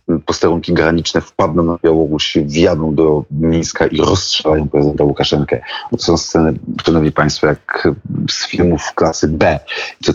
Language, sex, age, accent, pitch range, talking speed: Polish, male, 40-59, native, 80-90 Hz, 135 wpm